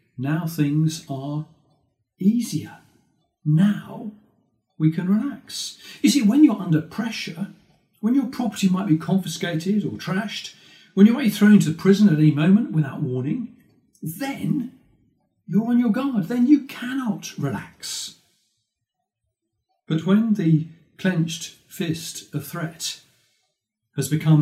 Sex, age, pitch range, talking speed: male, 40-59, 145-195 Hz, 130 wpm